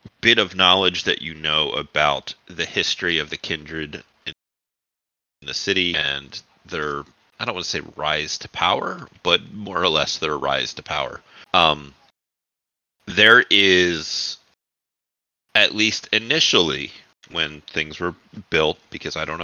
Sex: male